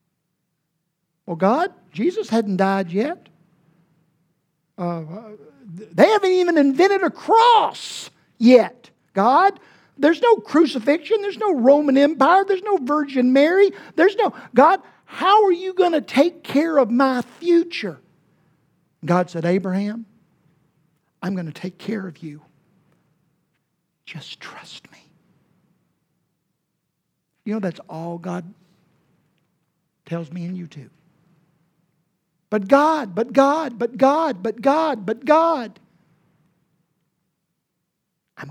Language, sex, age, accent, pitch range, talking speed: English, male, 50-69, American, 170-245 Hz, 115 wpm